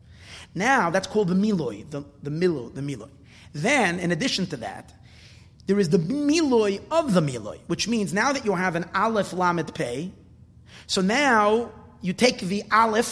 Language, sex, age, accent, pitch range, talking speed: English, male, 30-49, American, 165-235 Hz, 175 wpm